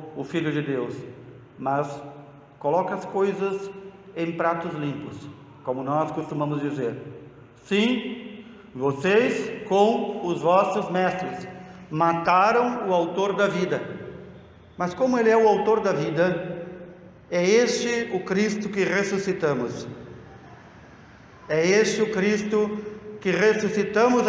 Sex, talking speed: male, 115 wpm